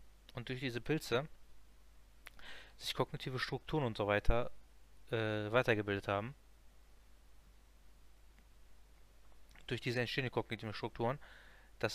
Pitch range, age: 105-125 Hz, 20-39